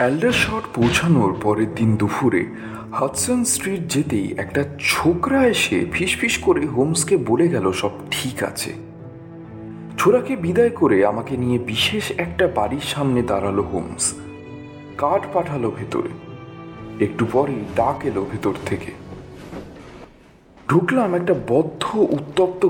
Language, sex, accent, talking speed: English, male, Indian, 85 wpm